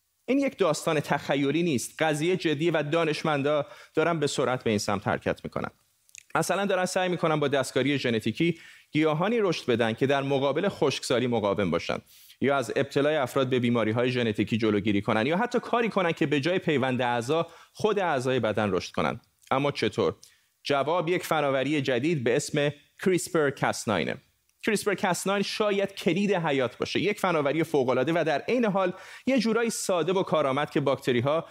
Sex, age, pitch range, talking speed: male, 30-49, 130-175 Hz, 170 wpm